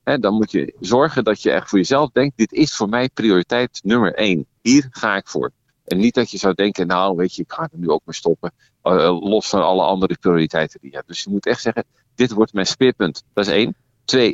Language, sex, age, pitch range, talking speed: Dutch, male, 50-69, 100-125 Hz, 245 wpm